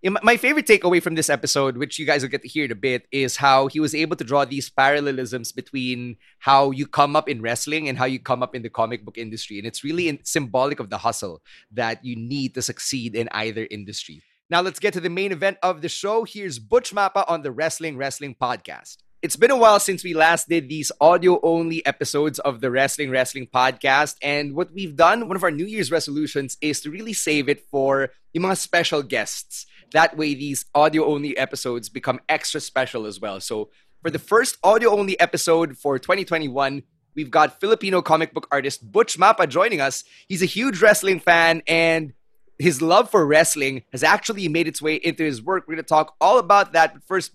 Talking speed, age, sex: 210 wpm, 20-39, male